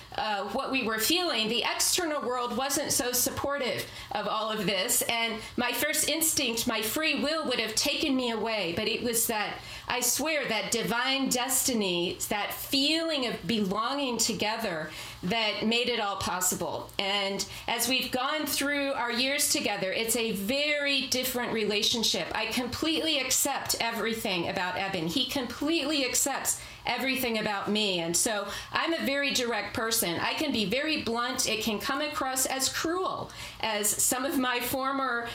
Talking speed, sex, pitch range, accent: 160 wpm, female, 220-275 Hz, American